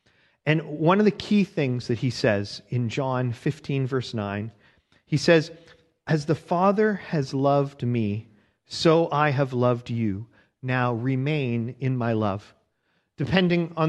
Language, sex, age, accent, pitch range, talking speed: English, male, 40-59, American, 125-160 Hz, 145 wpm